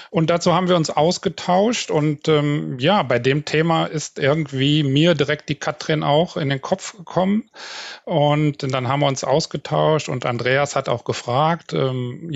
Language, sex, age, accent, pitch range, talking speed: German, male, 40-59, German, 135-160 Hz, 170 wpm